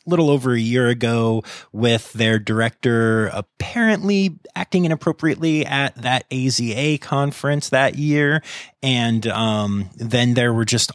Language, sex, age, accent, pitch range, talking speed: English, male, 30-49, American, 105-135 Hz, 125 wpm